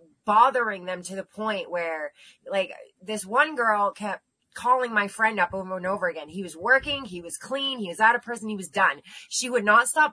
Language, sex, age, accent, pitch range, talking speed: English, female, 20-39, American, 190-240 Hz, 220 wpm